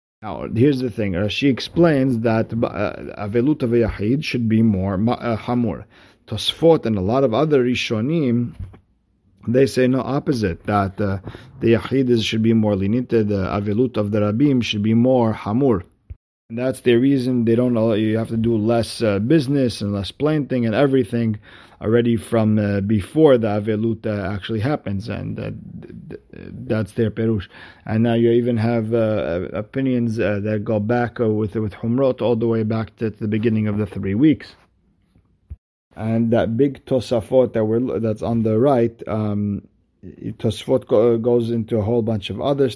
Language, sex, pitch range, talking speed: English, male, 105-120 Hz, 175 wpm